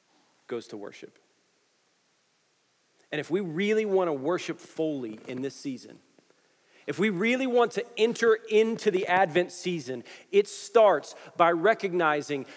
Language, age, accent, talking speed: English, 40-59, American, 135 wpm